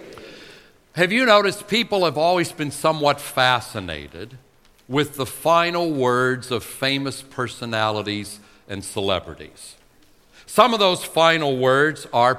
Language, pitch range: English, 120-160 Hz